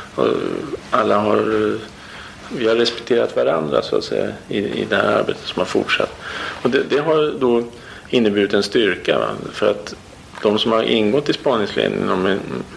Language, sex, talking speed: Swedish, male, 165 wpm